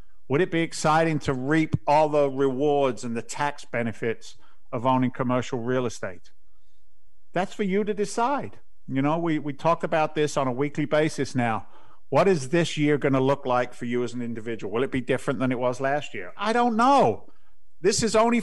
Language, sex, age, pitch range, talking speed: English, male, 50-69, 130-155 Hz, 205 wpm